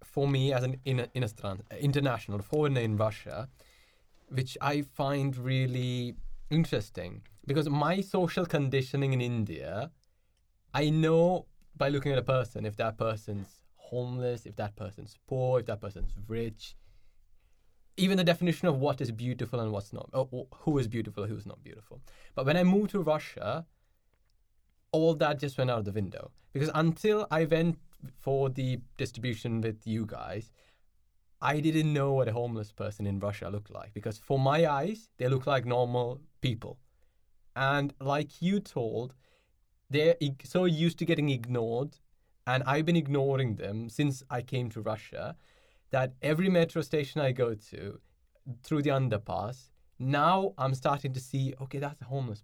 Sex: male